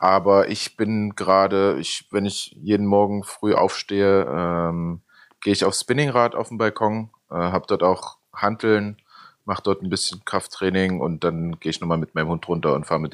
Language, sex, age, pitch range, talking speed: German, male, 20-39, 85-100 Hz, 185 wpm